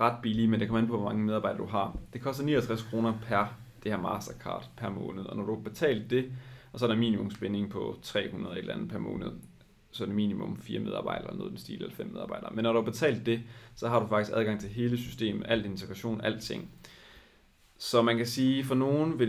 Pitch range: 105-120 Hz